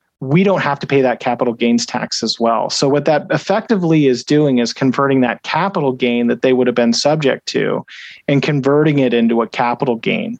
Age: 40-59